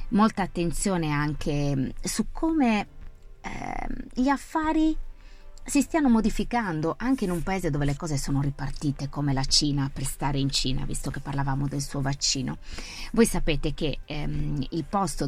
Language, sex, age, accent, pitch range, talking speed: Italian, female, 30-49, native, 140-175 Hz, 155 wpm